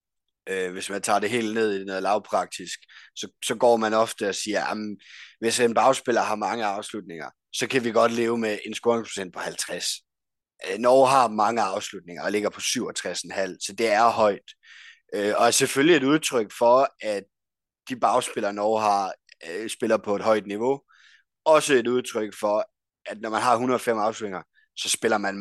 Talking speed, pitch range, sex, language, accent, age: 175 wpm, 105-130 Hz, male, Danish, native, 30-49